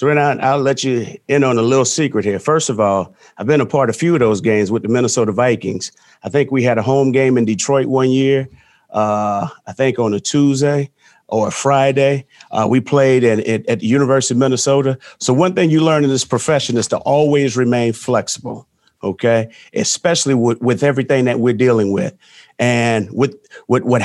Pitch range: 120-145 Hz